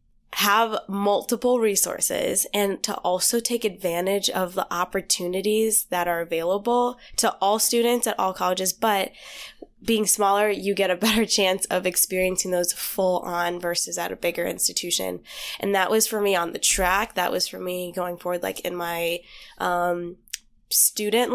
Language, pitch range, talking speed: English, 180-210 Hz, 160 wpm